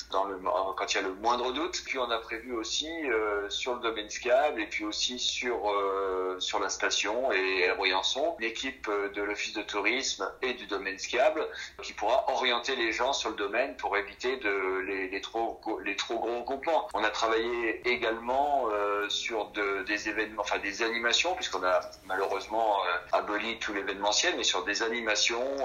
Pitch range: 100-125 Hz